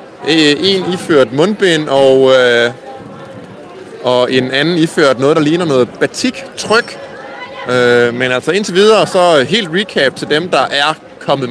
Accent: native